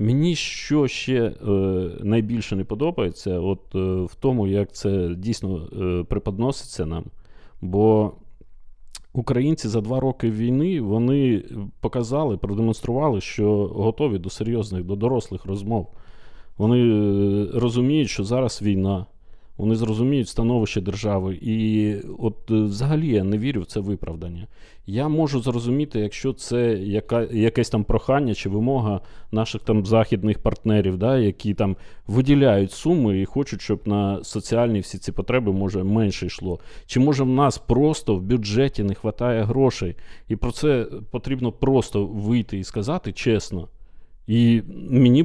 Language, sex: Ukrainian, male